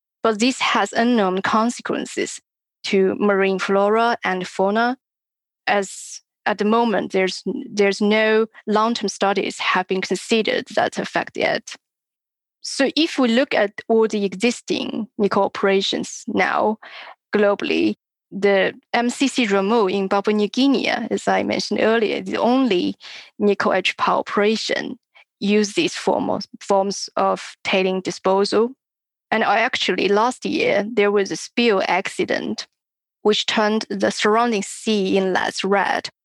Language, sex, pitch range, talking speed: English, female, 195-235 Hz, 130 wpm